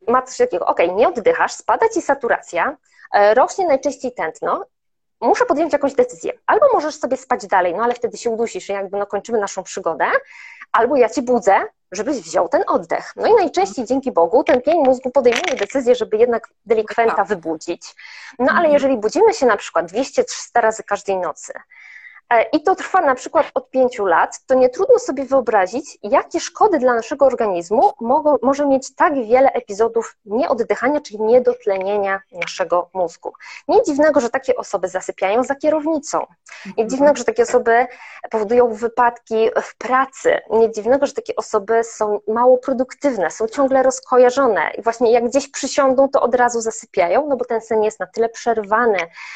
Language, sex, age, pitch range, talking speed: Polish, female, 20-39, 220-280 Hz, 165 wpm